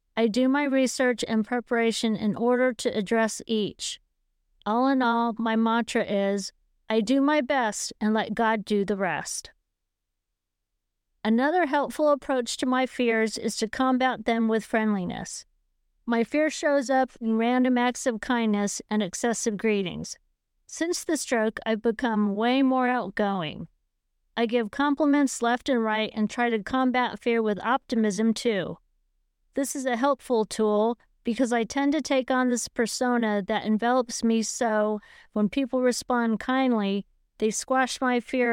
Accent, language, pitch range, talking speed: American, English, 210-255 Hz, 155 wpm